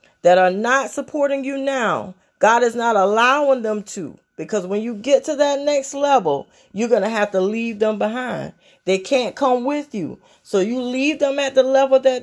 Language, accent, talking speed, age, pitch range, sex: English, American, 200 wpm, 30-49, 190-240 Hz, female